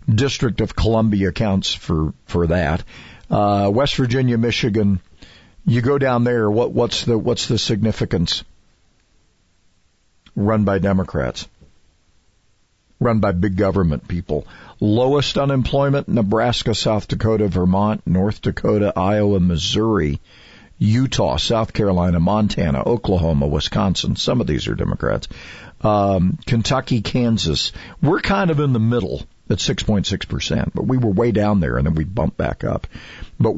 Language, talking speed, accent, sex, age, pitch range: English, 130 wpm, American, male, 50-69, 85-115 Hz